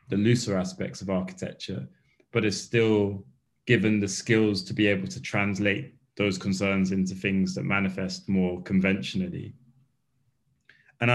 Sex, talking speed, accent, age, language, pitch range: male, 130 wpm, British, 20-39, English, 95-120 Hz